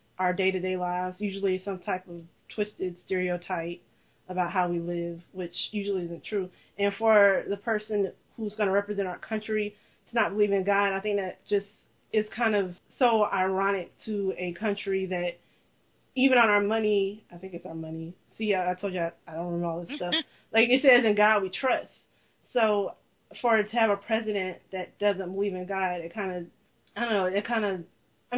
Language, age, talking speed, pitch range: English, 20-39, 200 wpm, 185-210 Hz